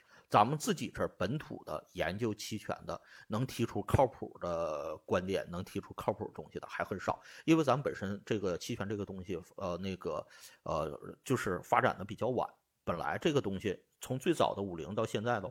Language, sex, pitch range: Chinese, male, 100-145 Hz